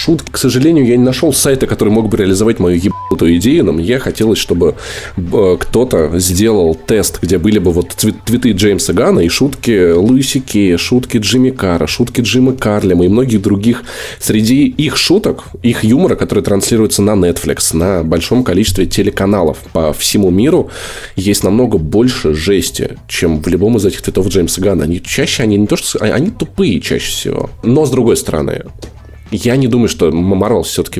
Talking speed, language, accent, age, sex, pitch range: 170 wpm, Russian, native, 20-39, male, 90-120 Hz